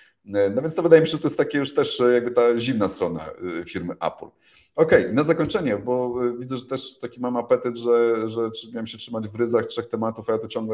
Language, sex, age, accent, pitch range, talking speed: Polish, male, 30-49, native, 105-135 Hz, 235 wpm